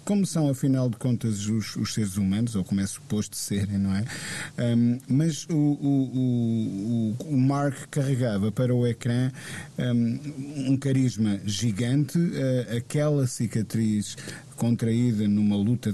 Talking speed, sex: 125 wpm, male